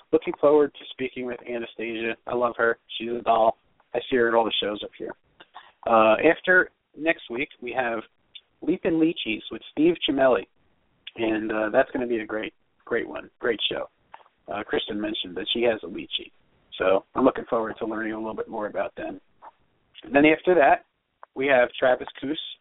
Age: 40-59